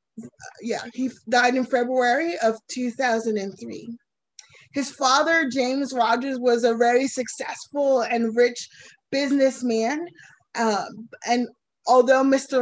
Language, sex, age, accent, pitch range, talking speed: English, female, 20-39, American, 215-255 Hz, 105 wpm